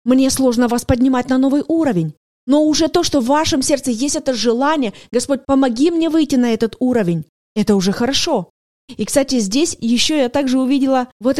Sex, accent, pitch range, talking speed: female, native, 235-295 Hz, 185 wpm